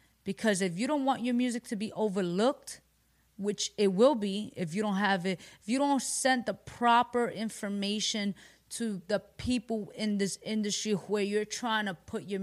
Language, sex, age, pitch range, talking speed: English, female, 20-39, 190-230 Hz, 185 wpm